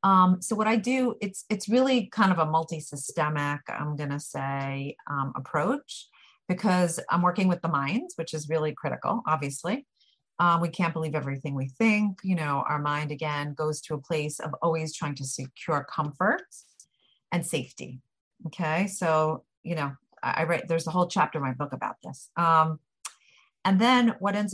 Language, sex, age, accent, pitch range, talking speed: English, female, 40-59, American, 150-190 Hz, 180 wpm